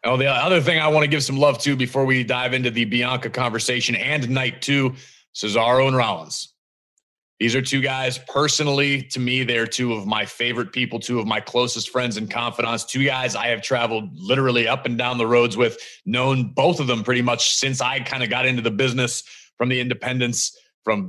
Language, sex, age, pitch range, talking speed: English, male, 30-49, 120-140 Hz, 210 wpm